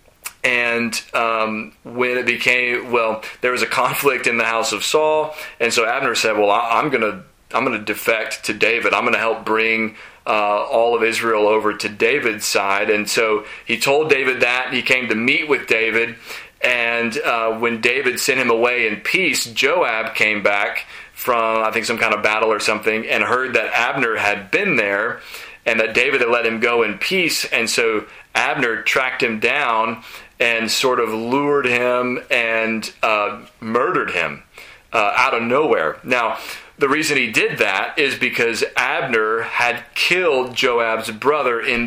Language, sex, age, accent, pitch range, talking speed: English, male, 30-49, American, 110-125 Hz, 180 wpm